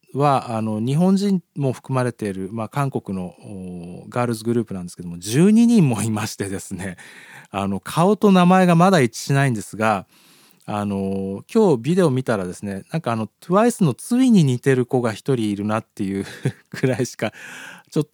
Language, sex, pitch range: Japanese, male, 100-165 Hz